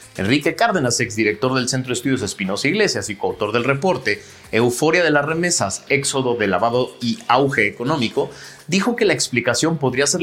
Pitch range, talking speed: 120-155 Hz, 175 wpm